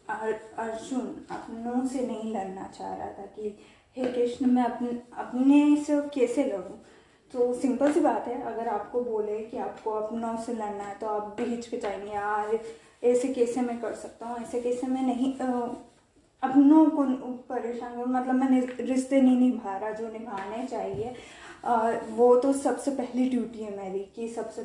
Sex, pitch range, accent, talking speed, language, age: female, 225-275 Hz, native, 170 wpm, Hindi, 10-29